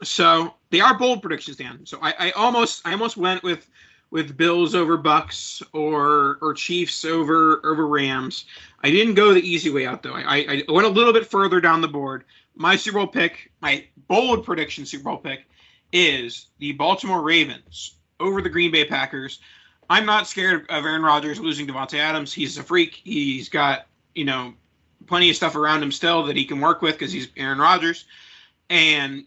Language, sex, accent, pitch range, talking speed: English, male, American, 145-180 Hz, 190 wpm